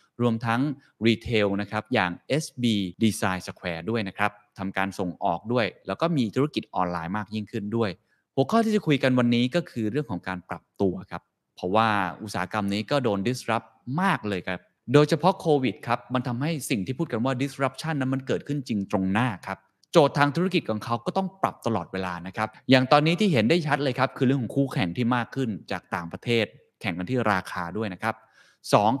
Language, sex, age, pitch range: Thai, male, 20-39, 100-145 Hz